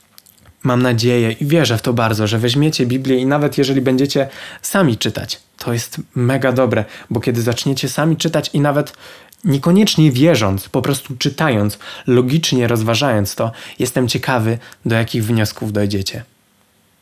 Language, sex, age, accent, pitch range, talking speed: Polish, male, 20-39, native, 110-140 Hz, 145 wpm